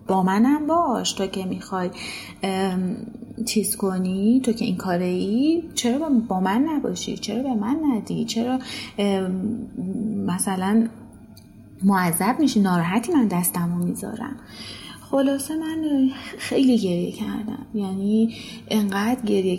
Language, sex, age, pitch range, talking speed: Persian, female, 30-49, 190-235 Hz, 115 wpm